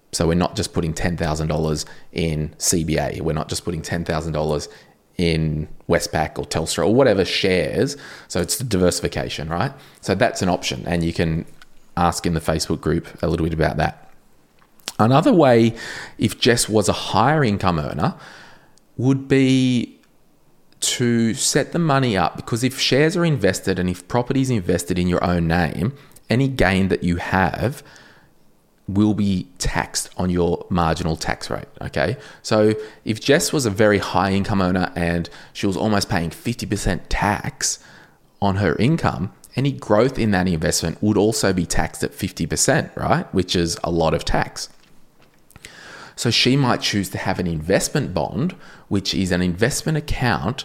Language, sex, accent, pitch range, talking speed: English, male, Australian, 85-115 Hz, 160 wpm